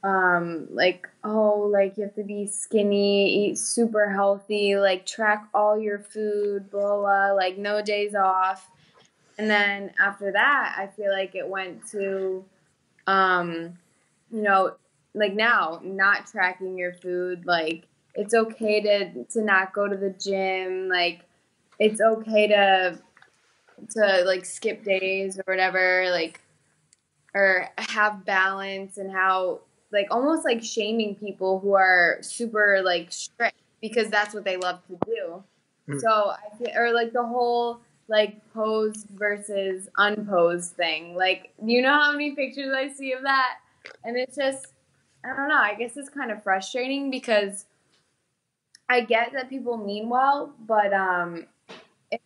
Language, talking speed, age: English, 150 wpm, 10-29